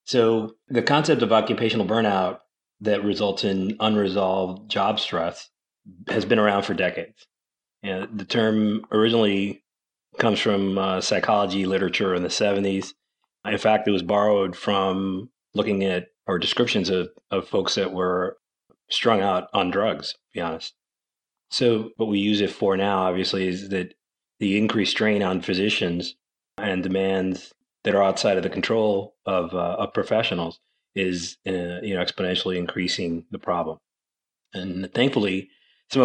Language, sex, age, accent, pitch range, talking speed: English, male, 30-49, American, 95-105 Hz, 145 wpm